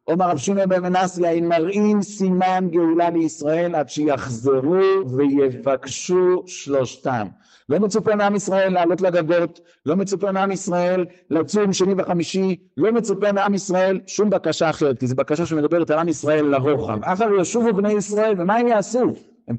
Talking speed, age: 155 wpm, 60-79